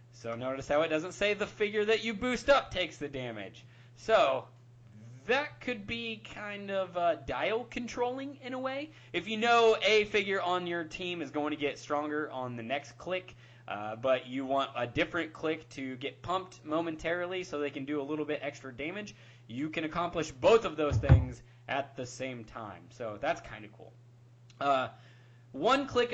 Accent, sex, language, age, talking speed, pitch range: American, male, English, 20-39, 190 wpm, 120-190 Hz